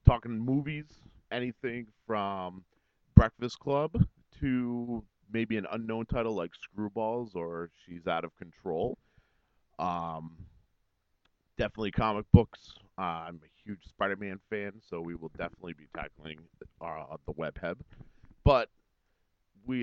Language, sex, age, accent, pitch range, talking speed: English, male, 40-59, American, 80-110 Hz, 120 wpm